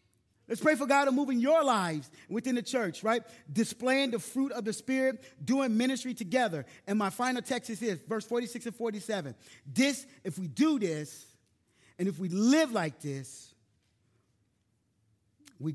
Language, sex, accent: English, male, American